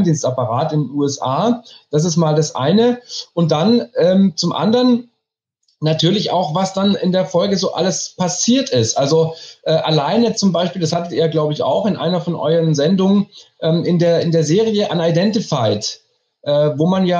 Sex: male